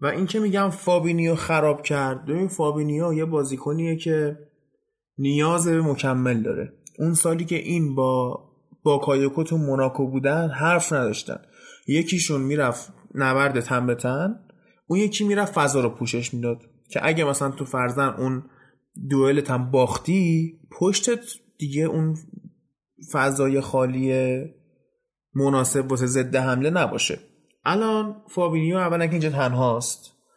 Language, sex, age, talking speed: Persian, male, 20-39, 130 wpm